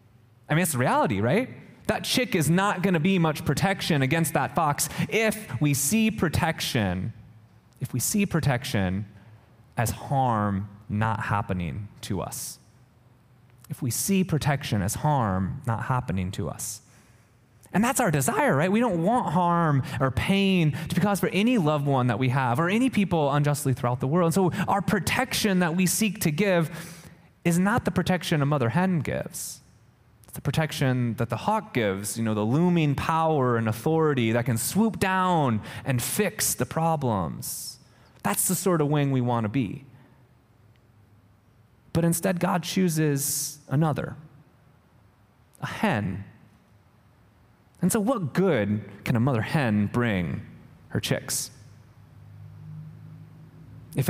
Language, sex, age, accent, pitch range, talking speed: English, male, 20-39, American, 115-165 Hz, 150 wpm